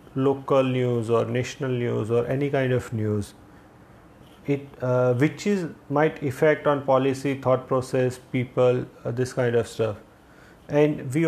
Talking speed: 150 wpm